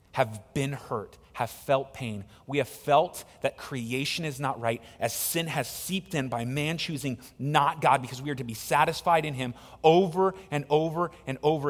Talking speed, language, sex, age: 190 wpm, English, male, 30-49